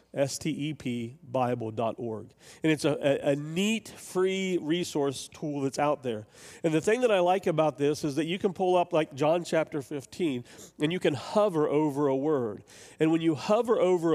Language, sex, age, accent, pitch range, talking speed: English, male, 40-59, American, 140-180 Hz, 180 wpm